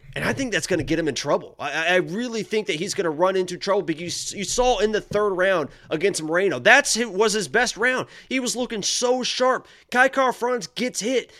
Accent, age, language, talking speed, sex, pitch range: American, 30-49, English, 225 wpm, male, 155-220 Hz